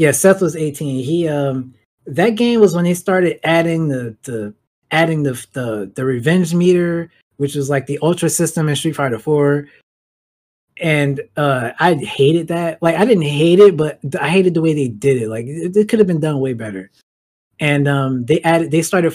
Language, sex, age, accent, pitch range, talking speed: English, male, 20-39, American, 135-170 Hz, 200 wpm